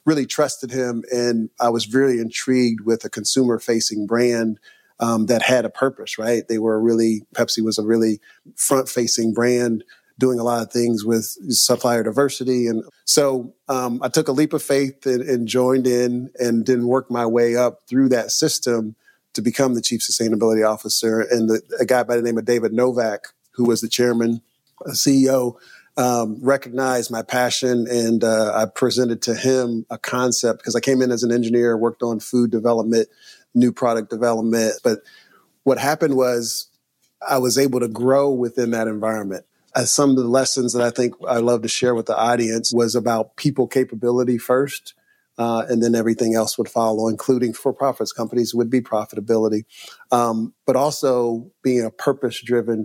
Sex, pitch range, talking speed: male, 115-130 Hz, 180 wpm